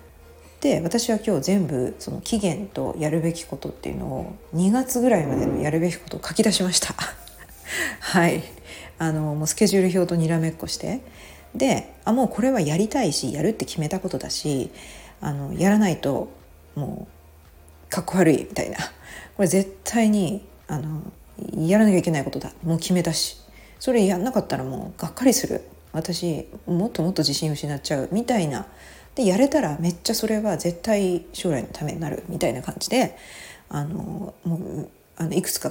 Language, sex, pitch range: Japanese, female, 155-210 Hz